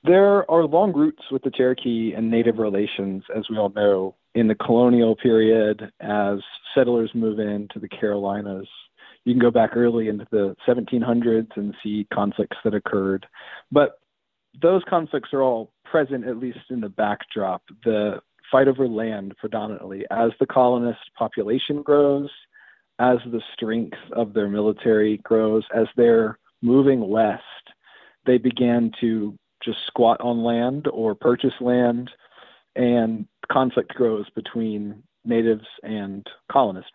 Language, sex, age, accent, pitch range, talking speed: English, male, 40-59, American, 110-135 Hz, 140 wpm